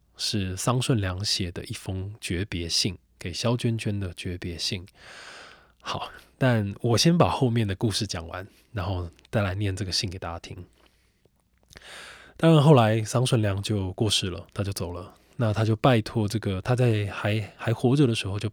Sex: male